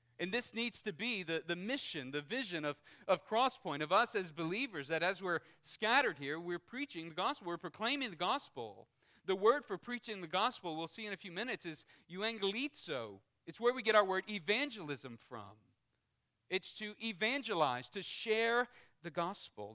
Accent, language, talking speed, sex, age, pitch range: American, English, 180 wpm, male, 40-59, 125-180 Hz